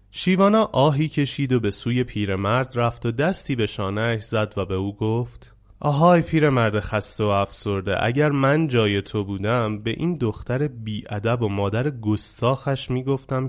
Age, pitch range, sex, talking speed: 30-49, 100-150 Hz, male, 160 wpm